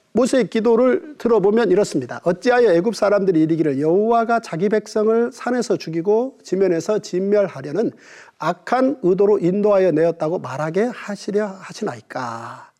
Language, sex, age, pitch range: Korean, male, 40-59, 200-305 Hz